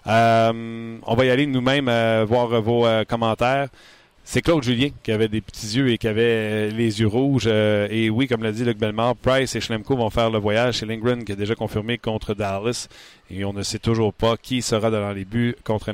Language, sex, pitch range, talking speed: French, male, 110-130 Hz, 235 wpm